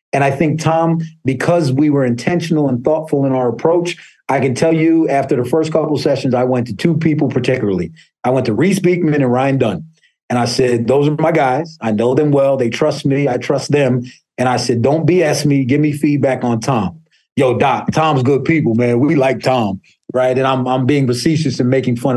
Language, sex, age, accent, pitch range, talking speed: English, male, 30-49, American, 120-150 Hz, 225 wpm